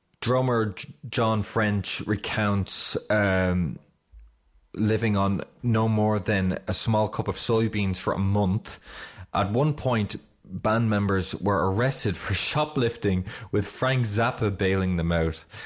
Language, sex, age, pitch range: English, male, 20-39, 95-115 Hz